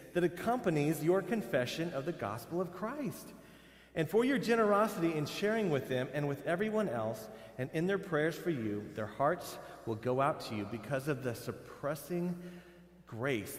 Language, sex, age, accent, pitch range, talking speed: English, male, 40-59, American, 125-160 Hz, 170 wpm